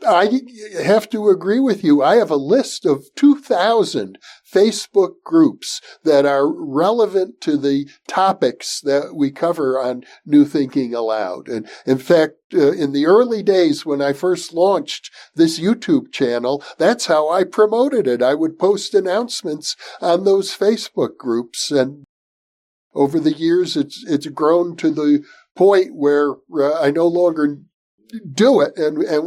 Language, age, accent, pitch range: English, 60-79, American, 145-220 Hz